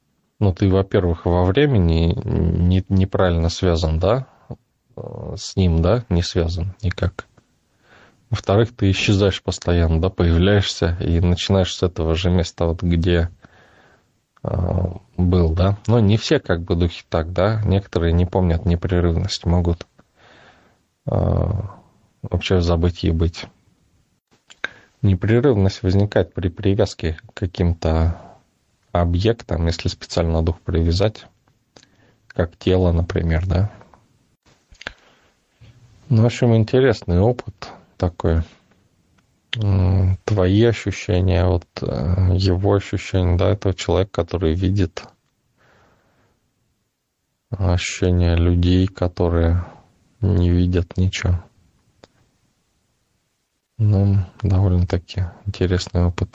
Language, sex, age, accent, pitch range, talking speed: Russian, male, 20-39, native, 85-100 Hz, 95 wpm